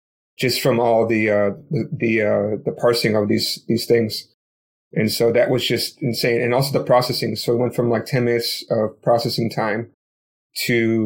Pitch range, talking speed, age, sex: 115-125 Hz, 195 wpm, 30-49, male